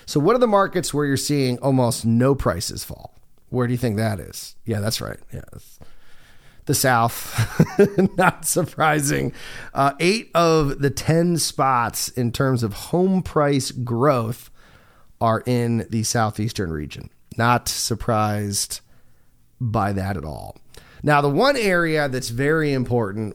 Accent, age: American, 30-49